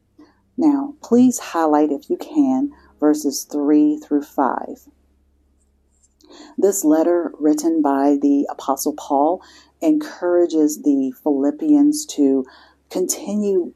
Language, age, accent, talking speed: English, 50-69, American, 90 wpm